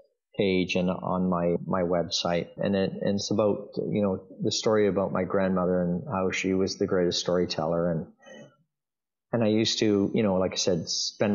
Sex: male